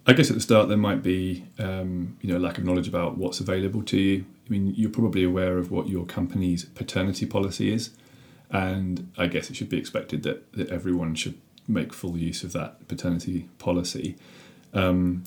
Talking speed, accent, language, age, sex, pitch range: 195 wpm, British, English, 30-49, male, 90-100 Hz